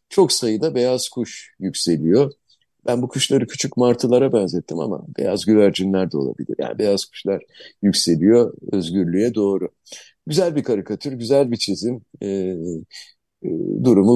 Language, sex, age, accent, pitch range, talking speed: Turkish, male, 50-69, native, 115-175 Hz, 125 wpm